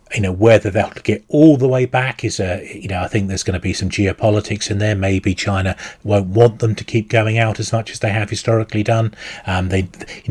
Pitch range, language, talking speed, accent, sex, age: 95-110 Hz, English, 245 wpm, British, male, 30-49